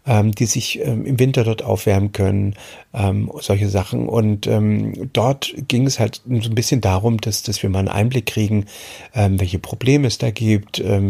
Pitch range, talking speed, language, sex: 110-135 Hz, 160 wpm, German, male